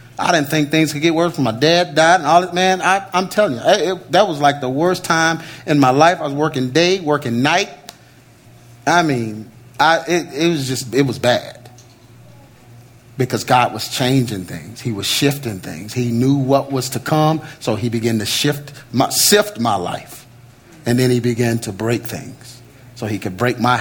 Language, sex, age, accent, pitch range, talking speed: English, male, 40-59, American, 120-170 Hz, 195 wpm